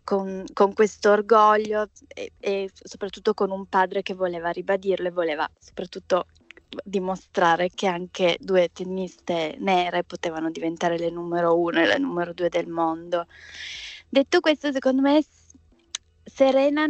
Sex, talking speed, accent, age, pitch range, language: female, 135 wpm, native, 20-39, 180-220 Hz, Italian